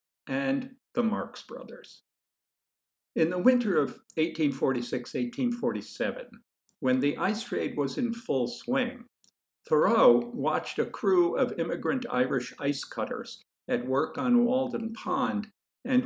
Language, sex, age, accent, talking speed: English, male, 60-79, American, 120 wpm